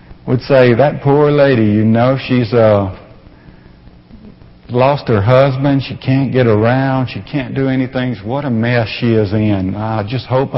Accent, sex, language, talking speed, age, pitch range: American, male, English, 165 wpm, 50-69, 115-140 Hz